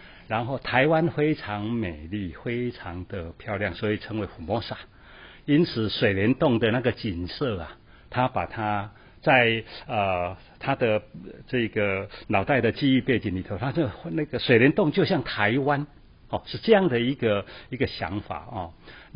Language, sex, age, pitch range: Chinese, male, 60-79, 100-130 Hz